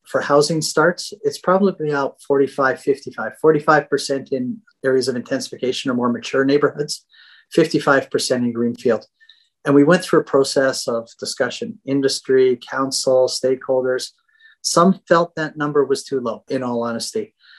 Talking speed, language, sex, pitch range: 140 wpm, English, male, 130-155 Hz